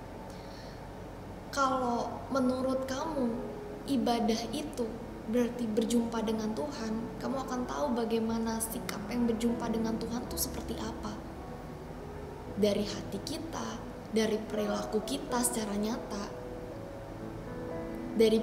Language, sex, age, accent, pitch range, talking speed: Indonesian, female, 20-39, native, 205-255 Hz, 100 wpm